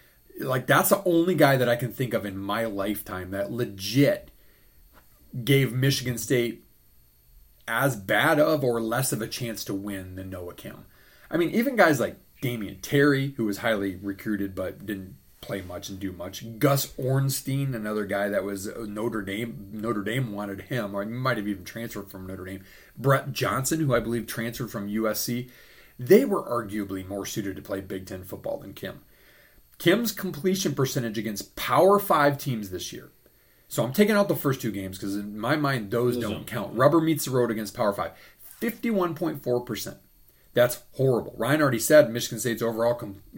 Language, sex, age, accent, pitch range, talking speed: English, male, 30-49, American, 100-135 Hz, 180 wpm